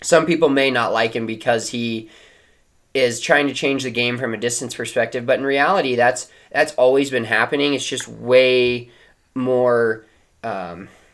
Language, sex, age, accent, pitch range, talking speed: English, male, 20-39, American, 110-130 Hz, 165 wpm